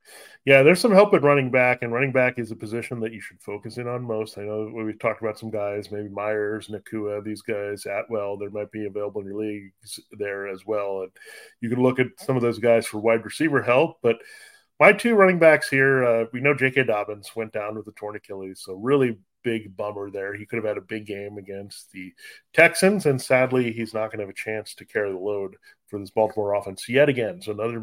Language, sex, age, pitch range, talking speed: English, male, 30-49, 105-140 Hz, 235 wpm